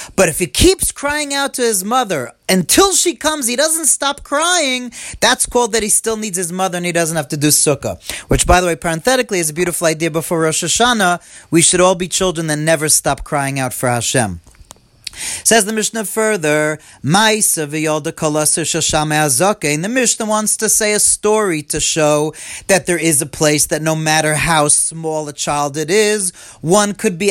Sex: male